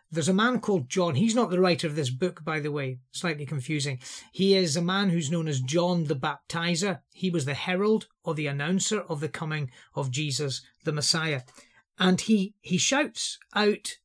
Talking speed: 195 wpm